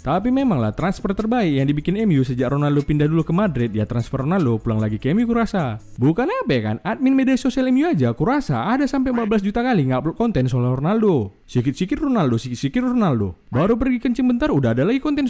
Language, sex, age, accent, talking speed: Indonesian, male, 20-39, native, 210 wpm